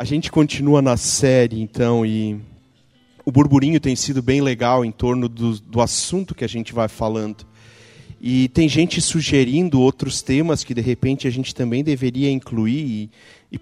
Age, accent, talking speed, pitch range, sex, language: 40-59, Brazilian, 170 wpm, 125-165 Hz, male, Portuguese